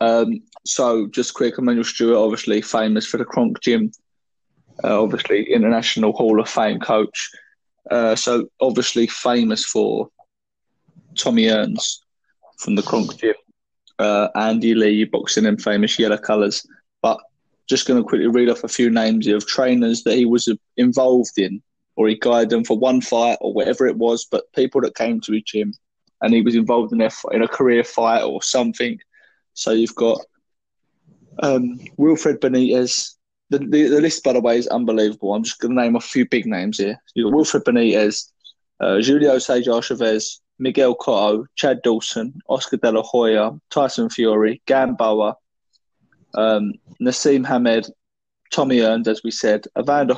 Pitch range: 110-130 Hz